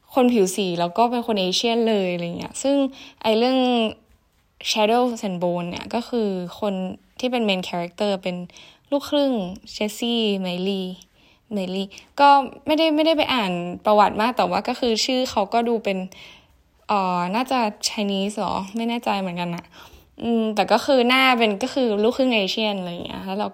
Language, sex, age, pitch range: Thai, female, 10-29, 195-250 Hz